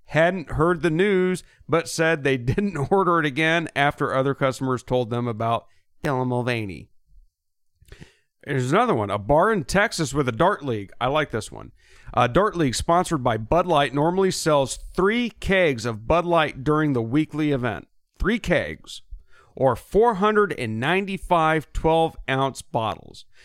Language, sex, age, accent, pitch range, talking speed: English, male, 40-59, American, 115-165 Hz, 150 wpm